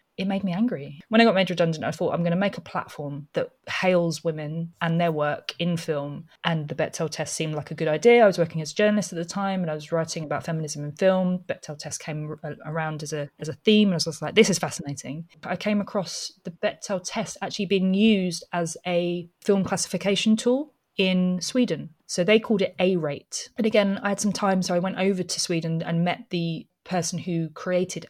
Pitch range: 165-195 Hz